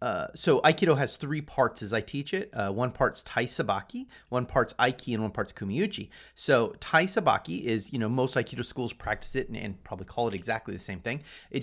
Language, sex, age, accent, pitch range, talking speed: English, male, 30-49, American, 115-155 Hz, 220 wpm